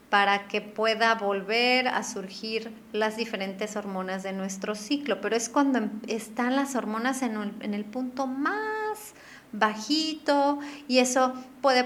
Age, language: 30-49, Spanish